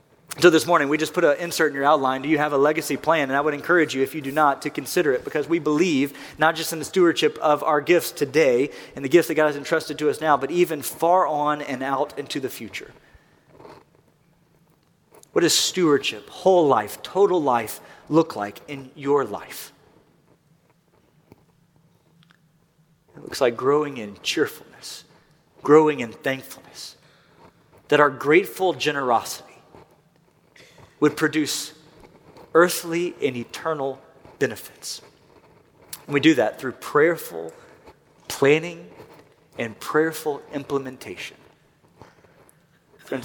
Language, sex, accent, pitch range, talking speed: English, male, American, 140-160 Hz, 140 wpm